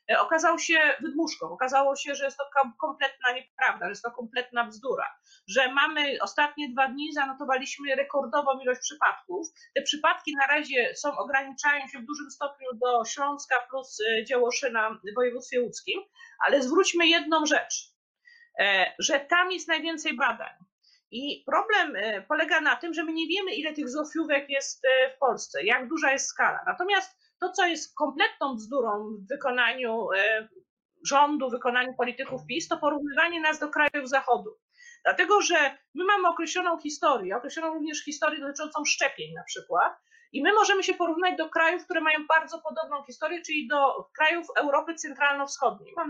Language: Polish